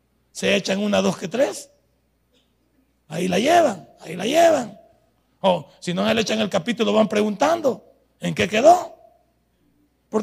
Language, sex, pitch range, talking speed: Spanish, male, 165-240 Hz, 155 wpm